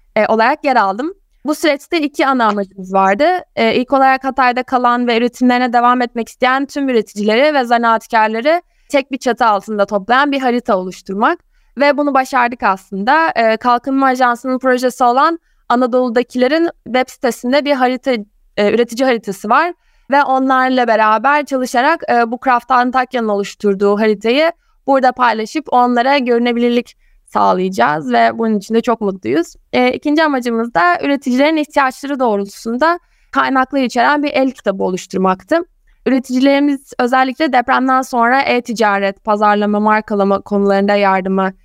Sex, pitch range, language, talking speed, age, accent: female, 220-275 Hz, Turkish, 135 wpm, 20-39, native